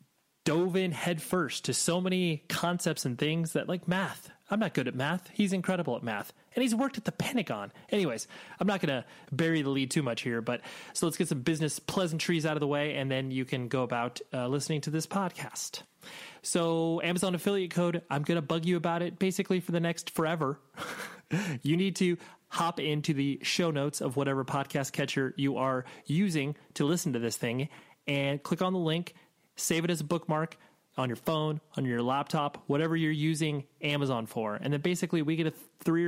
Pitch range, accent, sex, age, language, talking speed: 135-175 Hz, American, male, 30-49, English, 205 wpm